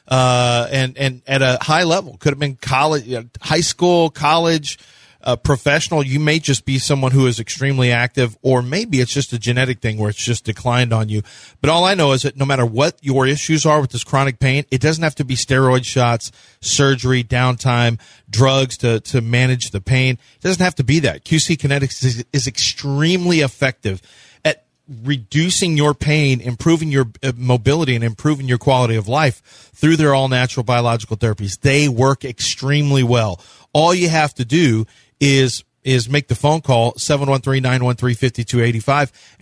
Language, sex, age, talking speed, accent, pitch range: English, male, 30-49, 175 wpm, American, 120-145 Hz